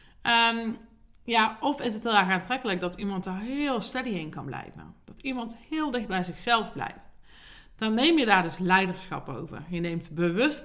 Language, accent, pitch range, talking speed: Dutch, Dutch, 175-235 Hz, 180 wpm